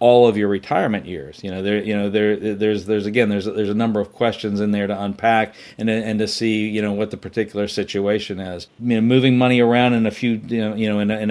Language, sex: English, male